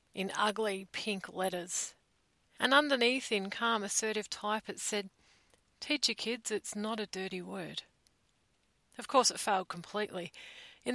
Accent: Australian